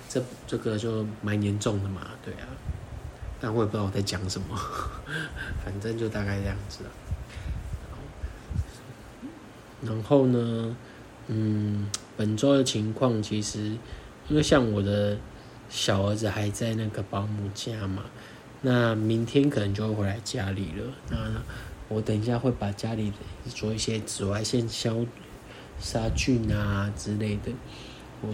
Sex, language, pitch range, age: male, Chinese, 100-120 Hz, 20-39